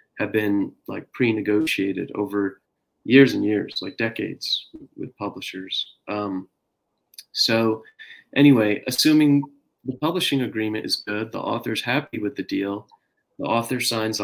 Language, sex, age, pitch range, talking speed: English, male, 30-49, 105-125 Hz, 130 wpm